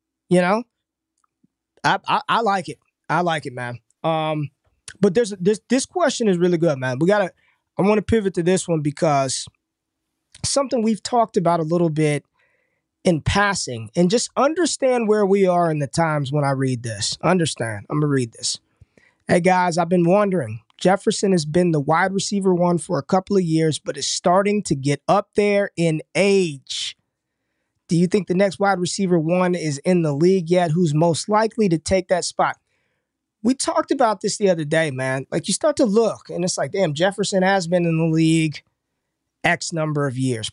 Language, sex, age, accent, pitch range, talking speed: English, male, 20-39, American, 155-210 Hz, 195 wpm